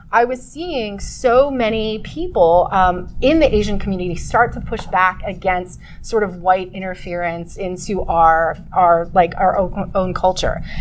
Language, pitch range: English, 180-225 Hz